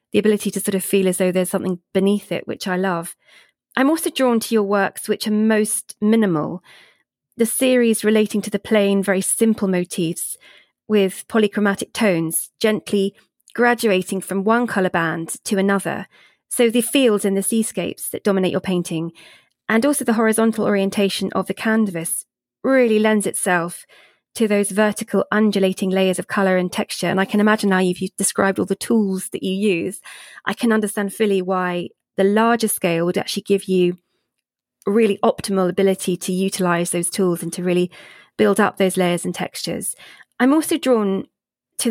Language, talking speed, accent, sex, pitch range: English, 175 wpm, British, female, 185-220 Hz